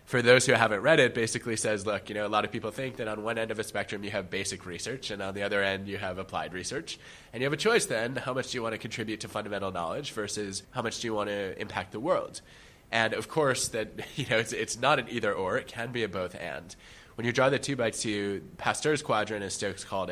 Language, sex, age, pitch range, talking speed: English, male, 20-39, 95-110 Hz, 275 wpm